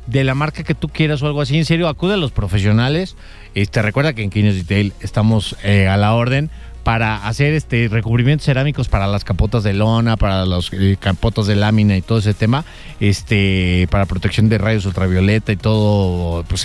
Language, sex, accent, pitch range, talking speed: English, male, Mexican, 110-150 Hz, 200 wpm